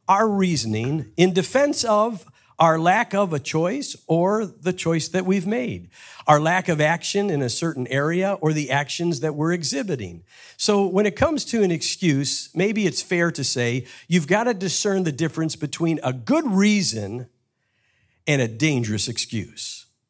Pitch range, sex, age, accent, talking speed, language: 130-195 Hz, male, 50-69, American, 165 wpm, English